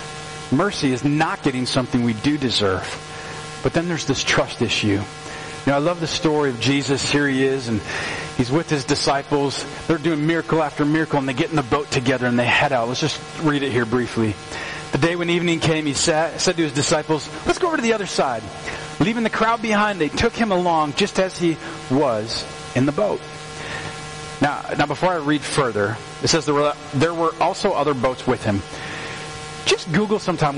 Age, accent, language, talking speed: 40-59, American, English, 205 wpm